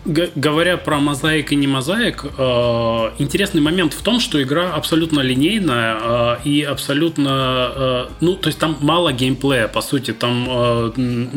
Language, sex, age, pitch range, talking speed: Russian, male, 20-39, 115-150 Hz, 155 wpm